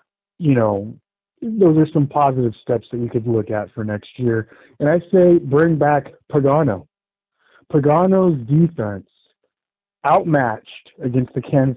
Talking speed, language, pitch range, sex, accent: 140 wpm, English, 120-165 Hz, male, American